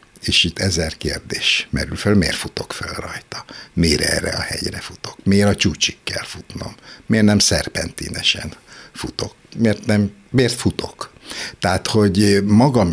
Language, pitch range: Hungarian, 80-100 Hz